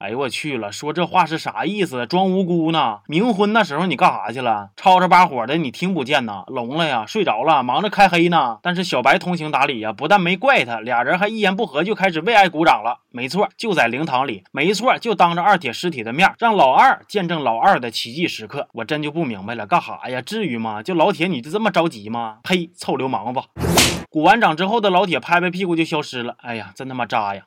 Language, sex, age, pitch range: Chinese, male, 20-39, 150-205 Hz